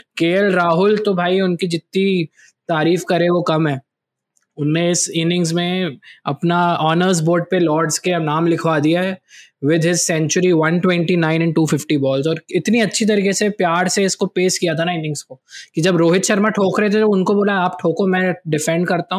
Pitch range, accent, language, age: 155-185 Hz, native, Hindi, 20-39